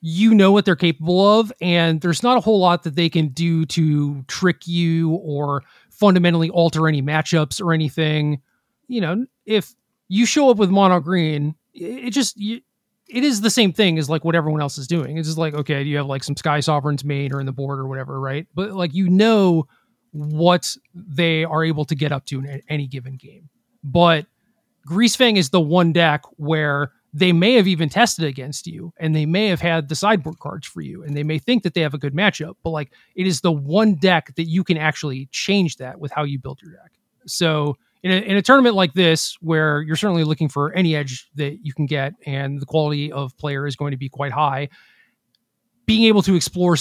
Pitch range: 145-185 Hz